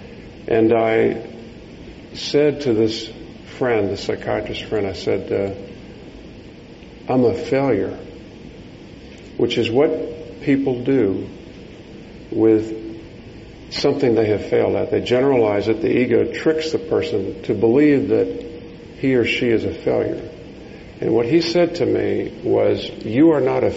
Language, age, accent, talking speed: English, 50-69, American, 135 wpm